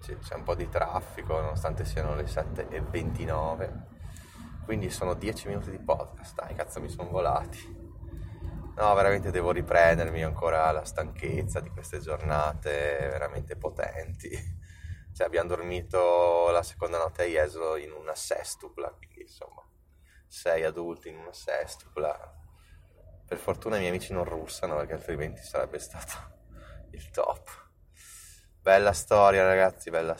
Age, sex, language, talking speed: 20-39, male, Italian, 135 wpm